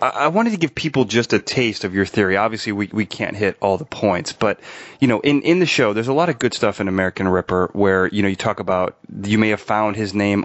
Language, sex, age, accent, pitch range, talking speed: English, male, 30-49, American, 95-115 Hz, 270 wpm